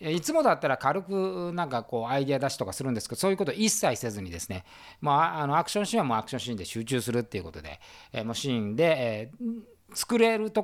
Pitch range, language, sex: 115-195 Hz, Japanese, male